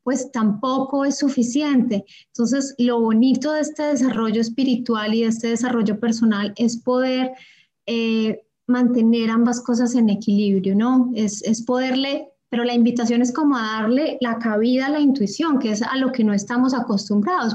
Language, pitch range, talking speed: Spanish, 215-255 Hz, 165 wpm